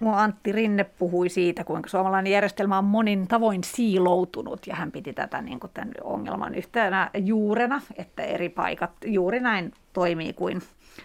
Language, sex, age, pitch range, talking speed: Finnish, female, 40-59, 185-225 Hz, 150 wpm